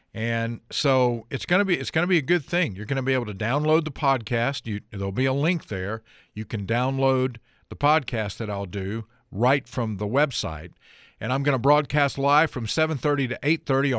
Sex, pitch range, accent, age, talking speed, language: male, 100-130 Hz, American, 50-69, 215 wpm, English